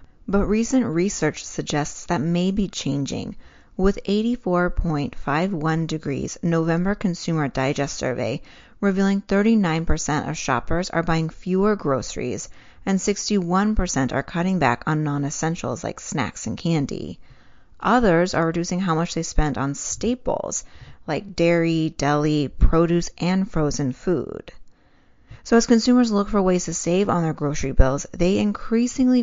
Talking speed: 130 wpm